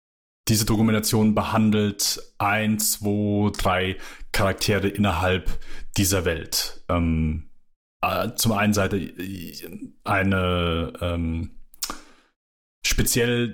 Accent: German